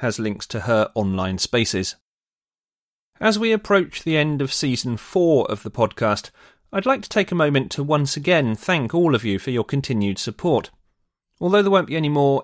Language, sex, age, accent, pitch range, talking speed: English, male, 30-49, British, 110-150 Hz, 195 wpm